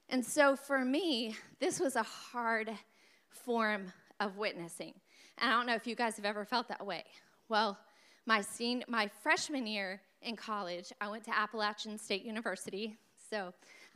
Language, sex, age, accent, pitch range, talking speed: English, female, 20-39, American, 210-255 Hz, 170 wpm